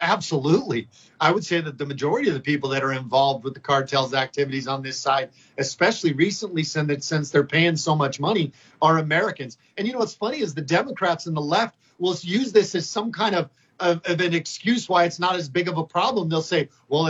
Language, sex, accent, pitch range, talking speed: English, male, American, 155-200 Hz, 220 wpm